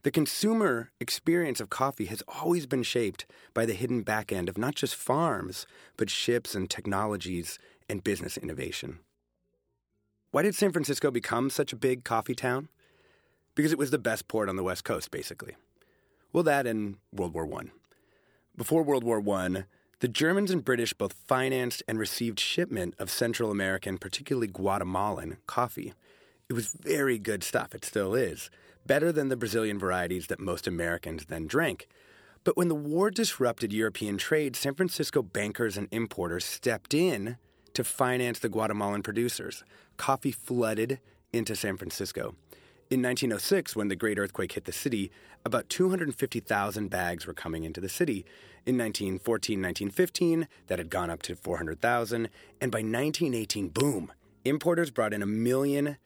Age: 30-49